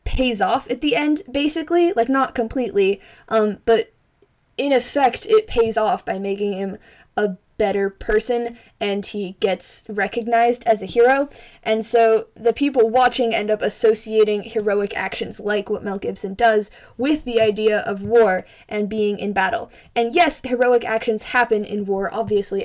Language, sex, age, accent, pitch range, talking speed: English, female, 10-29, American, 205-235 Hz, 160 wpm